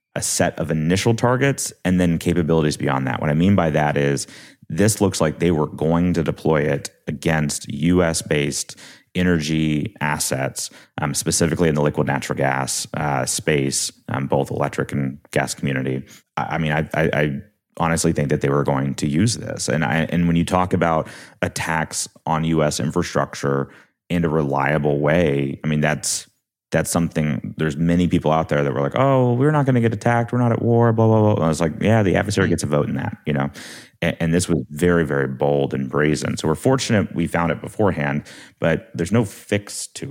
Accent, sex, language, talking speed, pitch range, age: American, male, English, 200 wpm, 70-85 Hz, 30-49